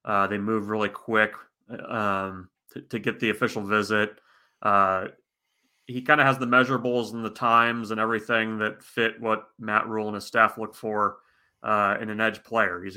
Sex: male